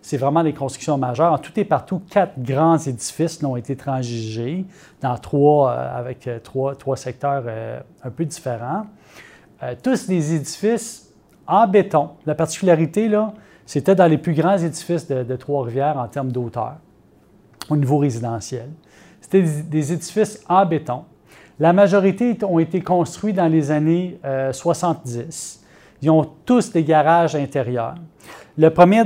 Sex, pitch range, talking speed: male, 140-180 Hz, 155 wpm